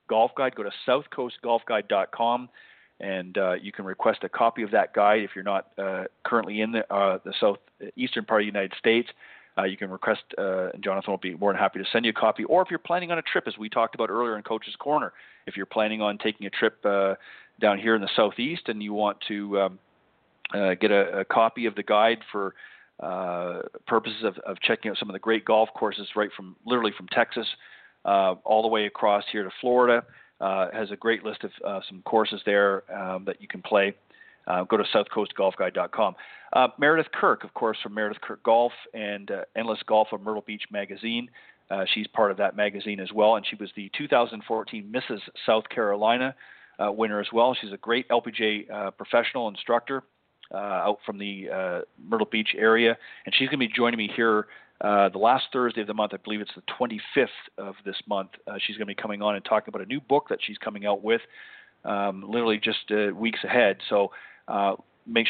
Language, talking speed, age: English, 215 wpm, 40-59